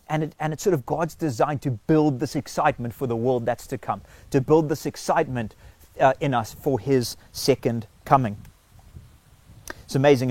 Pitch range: 125-170 Hz